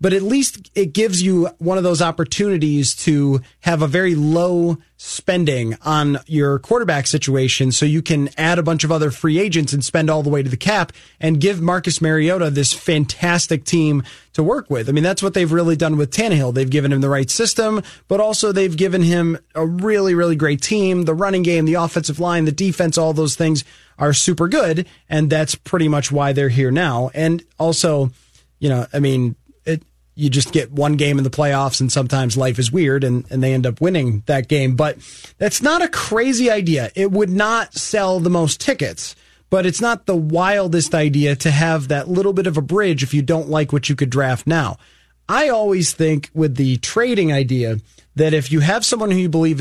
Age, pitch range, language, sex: 30-49, 140-180 Hz, English, male